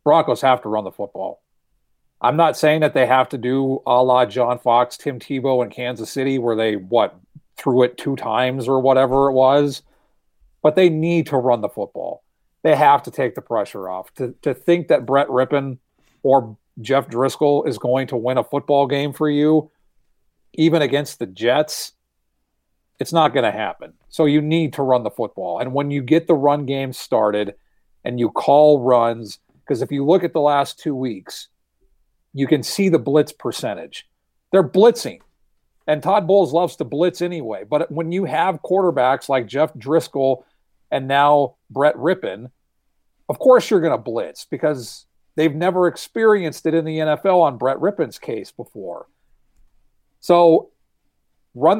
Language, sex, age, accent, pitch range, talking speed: English, male, 40-59, American, 125-160 Hz, 175 wpm